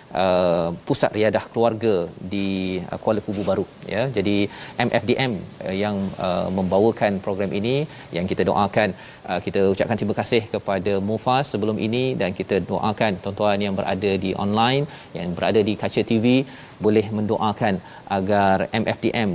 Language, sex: Malayalam, male